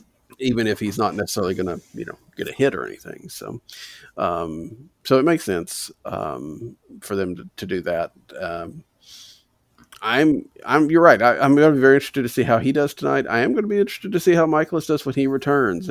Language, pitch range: English, 110-135 Hz